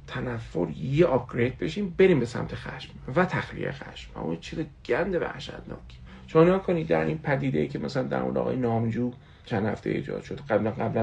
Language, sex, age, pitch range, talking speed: Persian, male, 40-59, 115-170 Hz, 190 wpm